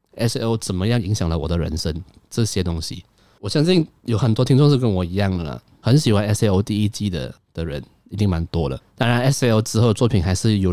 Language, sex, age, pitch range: Chinese, male, 20-39, 90-115 Hz